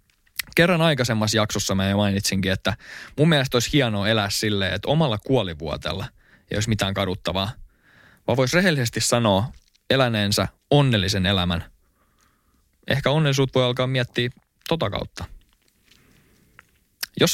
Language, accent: Finnish, native